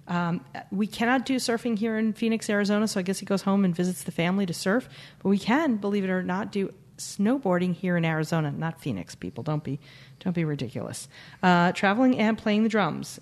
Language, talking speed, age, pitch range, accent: English, 215 wpm, 40-59, 160-220 Hz, American